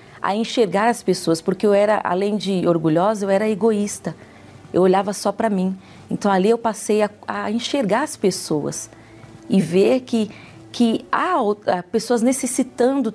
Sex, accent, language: female, Brazilian, Portuguese